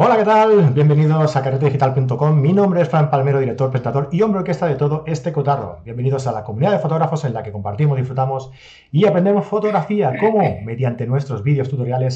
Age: 30-49